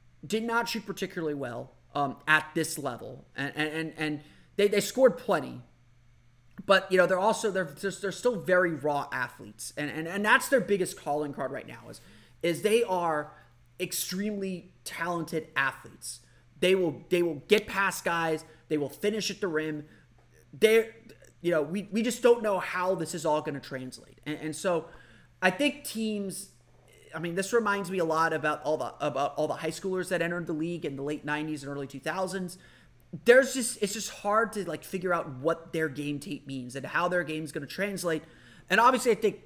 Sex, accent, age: male, American, 30-49